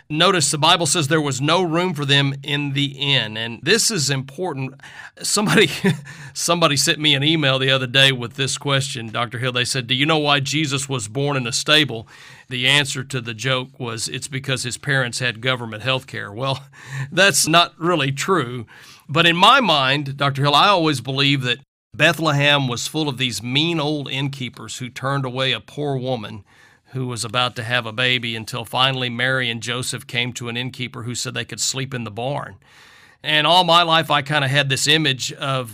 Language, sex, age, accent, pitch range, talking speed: English, male, 40-59, American, 125-150 Hz, 205 wpm